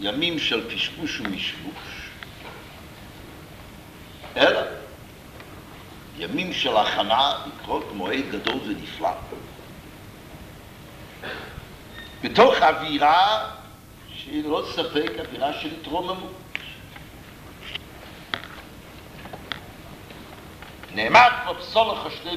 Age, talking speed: 60-79, 65 wpm